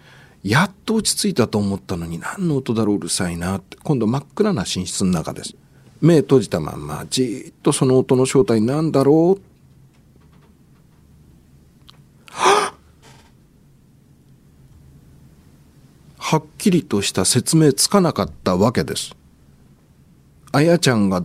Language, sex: Japanese, male